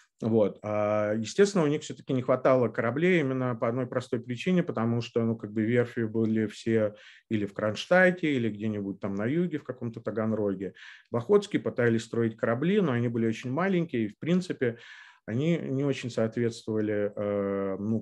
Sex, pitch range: male, 105-130 Hz